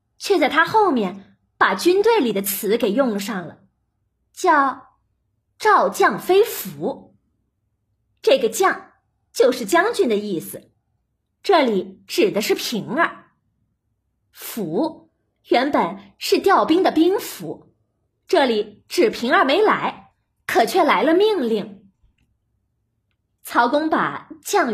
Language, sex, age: Chinese, female, 20-39